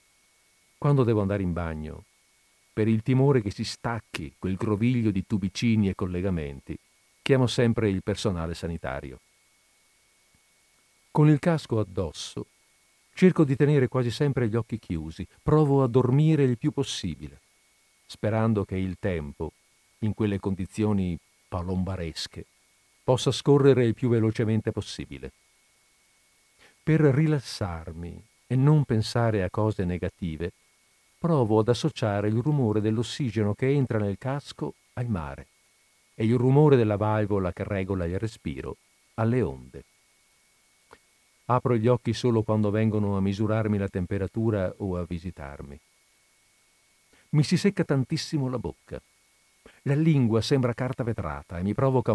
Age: 50-69